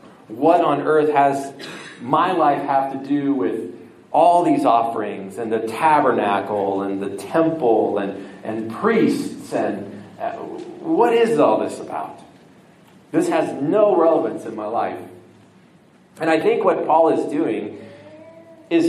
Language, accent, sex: English, American, male